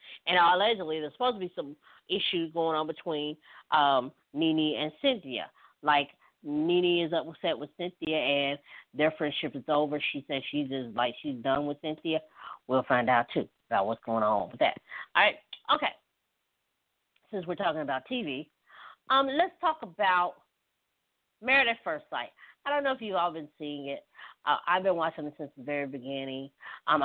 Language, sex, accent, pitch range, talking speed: English, female, American, 145-180 Hz, 175 wpm